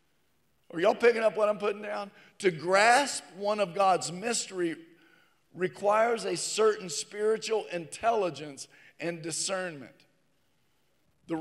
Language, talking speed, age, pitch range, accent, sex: English, 115 wpm, 50-69, 180-225 Hz, American, male